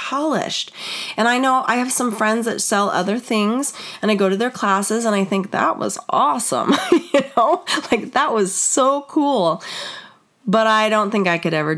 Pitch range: 160-220 Hz